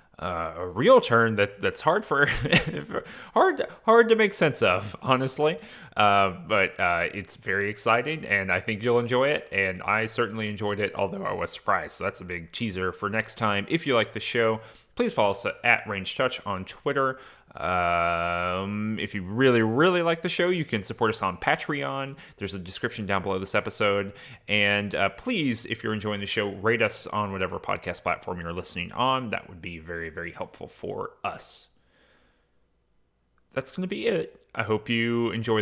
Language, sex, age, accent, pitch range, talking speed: English, male, 30-49, American, 95-120 Hz, 185 wpm